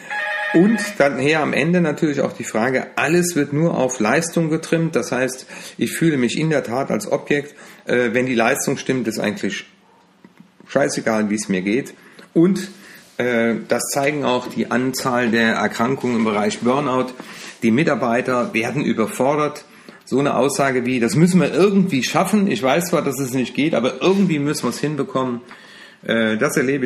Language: German